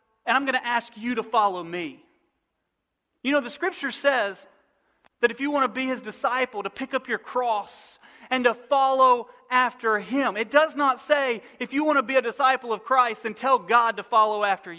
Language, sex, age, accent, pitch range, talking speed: English, male, 40-59, American, 220-275 Hz, 205 wpm